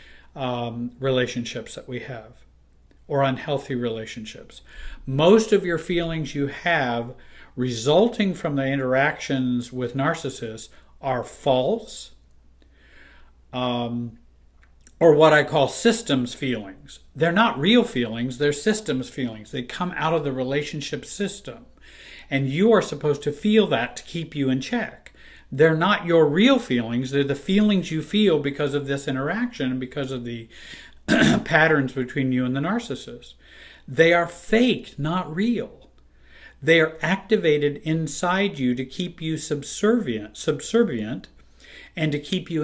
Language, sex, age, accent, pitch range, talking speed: English, male, 50-69, American, 125-170 Hz, 140 wpm